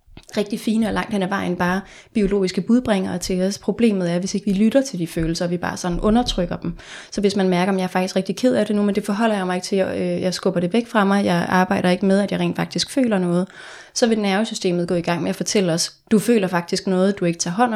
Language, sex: Danish, female